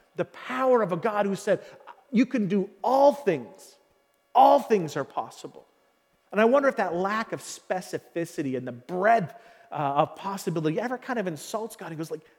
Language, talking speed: English, 180 wpm